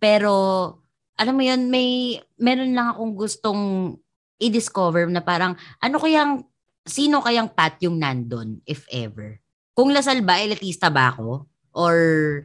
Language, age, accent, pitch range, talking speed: English, 20-39, Filipino, 130-190 Hz, 135 wpm